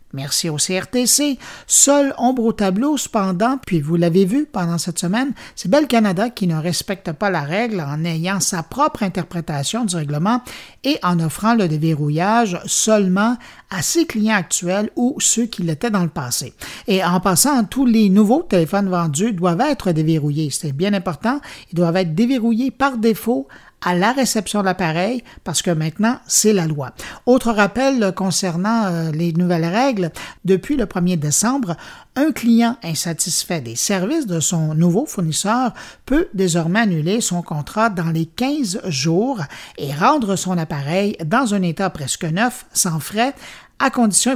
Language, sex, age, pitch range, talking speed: French, male, 50-69, 170-230 Hz, 160 wpm